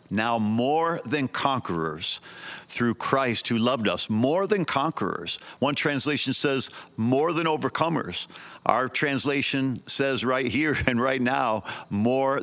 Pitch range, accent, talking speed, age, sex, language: 110-130 Hz, American, 130 wpm, 50-69, male, English